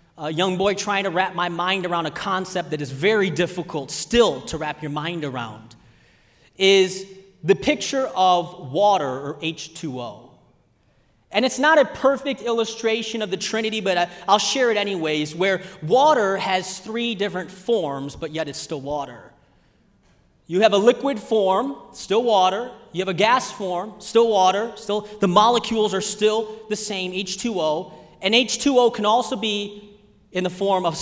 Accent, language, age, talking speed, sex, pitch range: American, English, 30-49, 165 wpm, male, 180-250 Hz